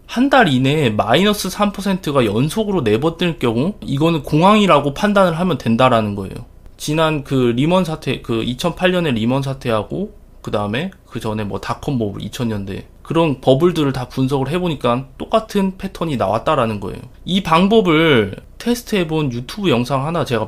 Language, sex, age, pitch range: Korean, male, 20-39, 120-190 Hz